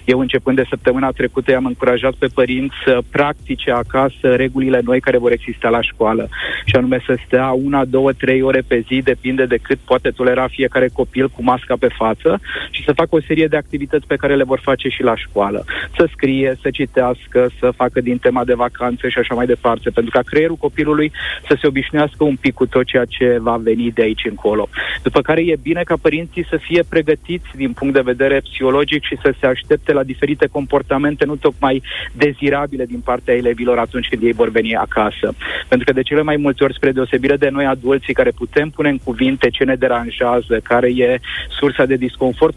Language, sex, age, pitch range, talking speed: Romanian, male, 30-49, 125-145 Hz, 205 wpm